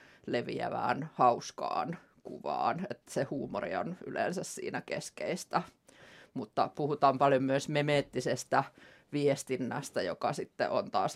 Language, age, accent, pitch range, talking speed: Finnish, 30-49, native, 140-170 Hz, 110 wpm